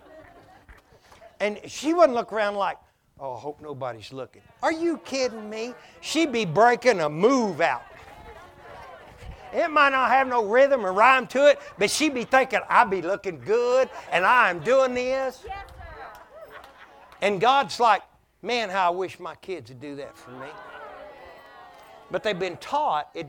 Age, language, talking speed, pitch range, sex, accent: 60-79, English, 160 wpm, 175-265 Hz, male, American